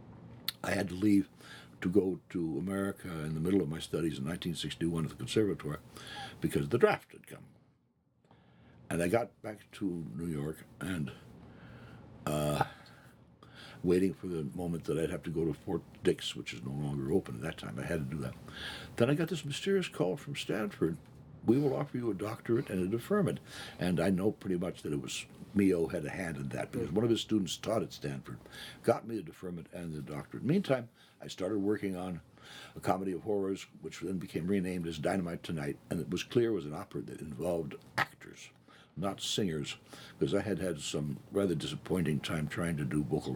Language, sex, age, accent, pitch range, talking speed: English, male, 60-79, American, 75-110 Hz, 200 wpm